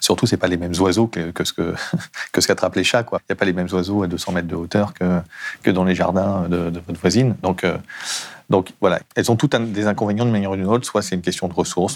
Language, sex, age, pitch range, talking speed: French, male, 40-59, 85-110 Hz, 275 wpm